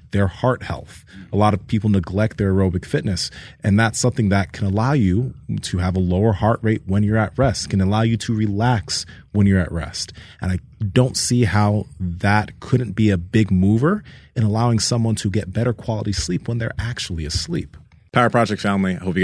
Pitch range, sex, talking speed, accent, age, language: 95-120 Hz, male, 205 wpm, American, 30-49, English